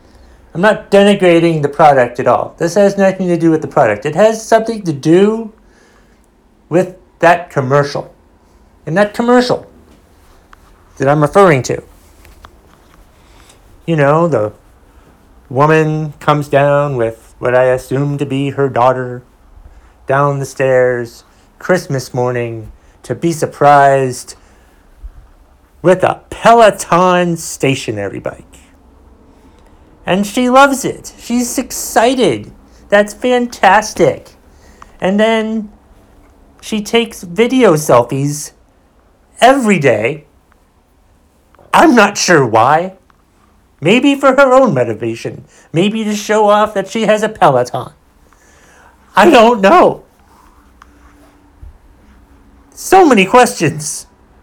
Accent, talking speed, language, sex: American, 105 wpm, English, male